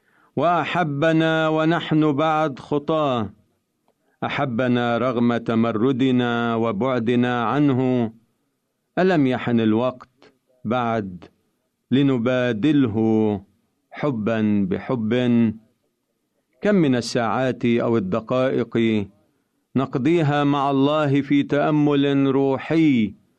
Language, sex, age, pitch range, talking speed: Arabic, male, 50-69, 110-140 Hz, 70 wpm